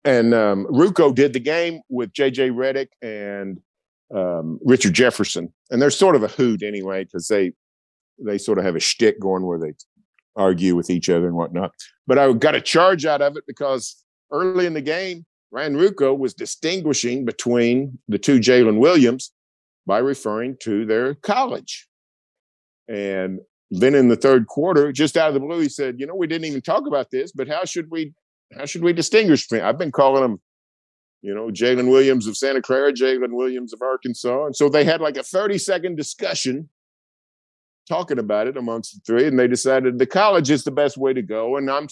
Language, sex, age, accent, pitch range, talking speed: English, male, 50-69, American, 105-145 Hz, 200 wpm